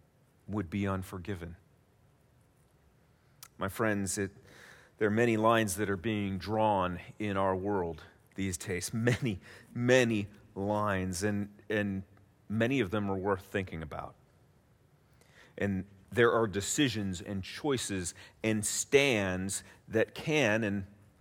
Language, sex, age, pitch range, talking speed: English, male, 40-59, 95-135 Hz, 115 wpm